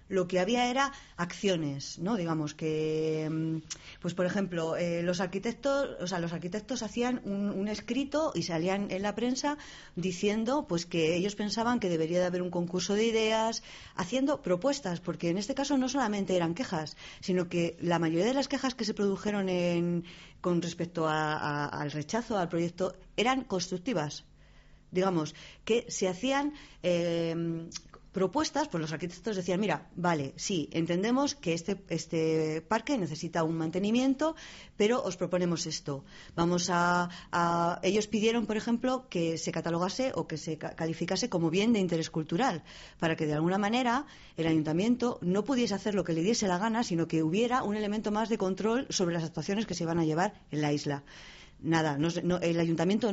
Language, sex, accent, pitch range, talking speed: Spanish, female, Spanish, 165-220 Hz, 175 wpm